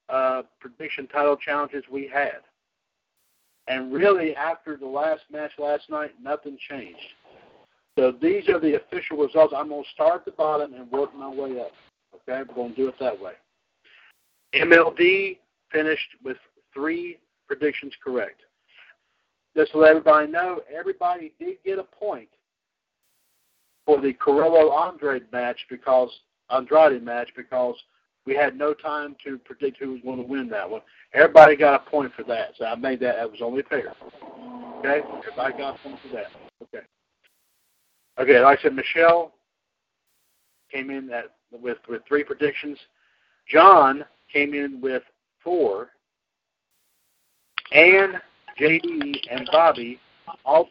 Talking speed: 145 wpm